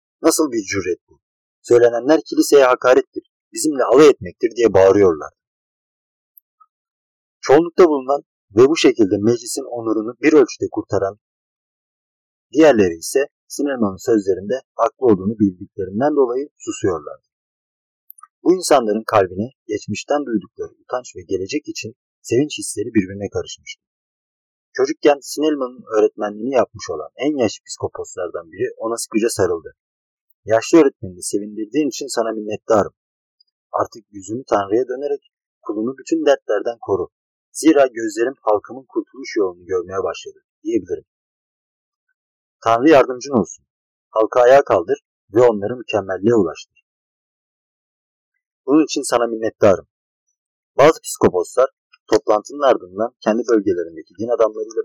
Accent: native